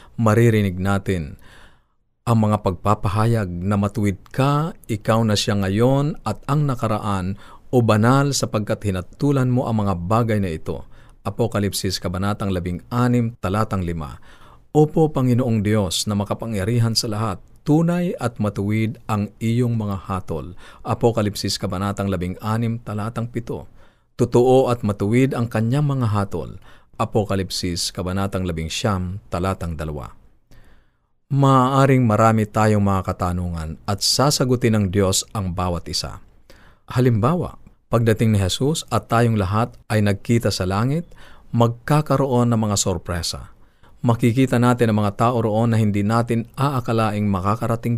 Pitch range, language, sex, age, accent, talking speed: 100-120 Hz, Filipino, male, 50-69, native, 125 wpm